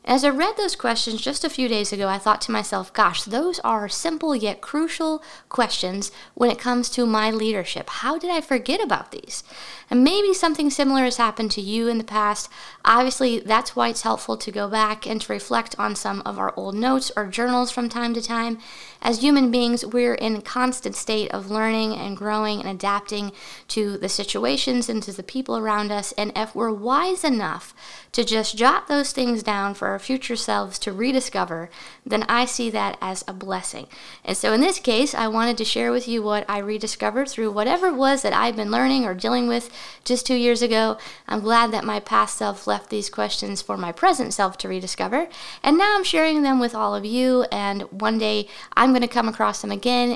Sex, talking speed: female, 210 wpm